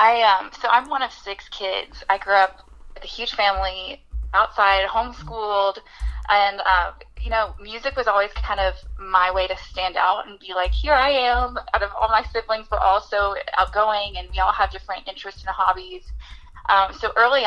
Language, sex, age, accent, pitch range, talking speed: English, female, 20-39, American, 190-215 Hz, 190 wpm